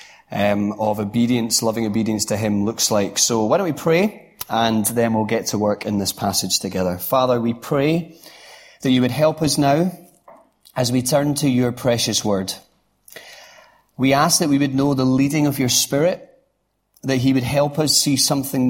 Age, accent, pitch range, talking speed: 30-49, British, 105-140 Hz, 185 wpm